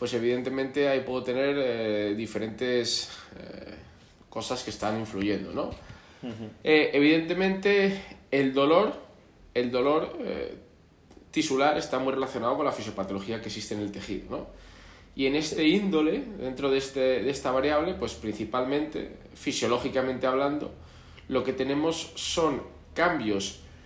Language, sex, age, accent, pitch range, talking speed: Spanish, male, 20-39, Spanish, 110-140 Hz, 130 wpm